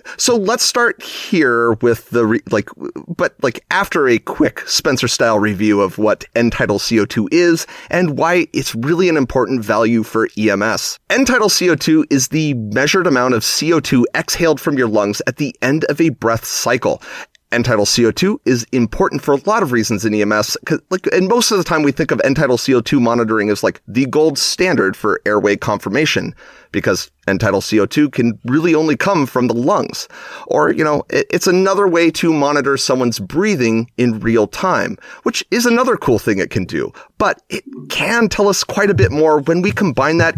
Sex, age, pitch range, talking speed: male, 30-49, 115-170 Hz, 185 wpm